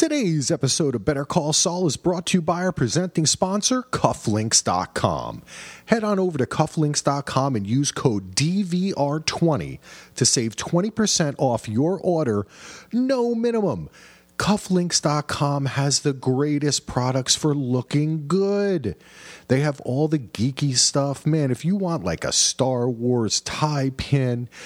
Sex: male